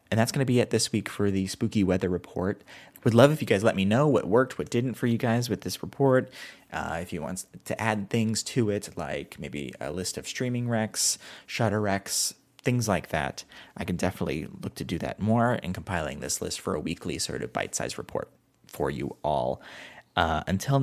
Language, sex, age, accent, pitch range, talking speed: English, male, 30-49, American, 95-125 Hz, 220 wpm